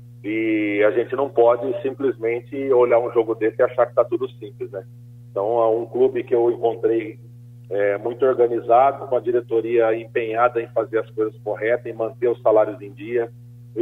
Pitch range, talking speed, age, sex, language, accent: 115-140 Hz, 185 wpm, 40-59, male, Portuguese, Brazilian